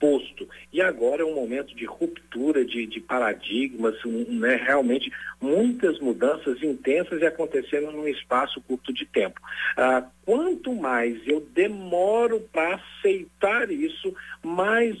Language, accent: Portuguese, Brazilian